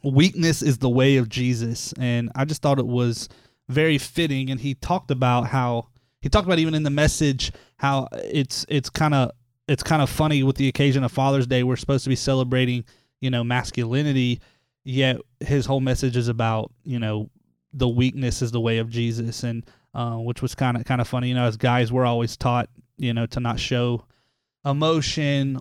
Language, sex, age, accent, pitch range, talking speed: English, male, 20-39, American, 125-140 Hz, 200 wpm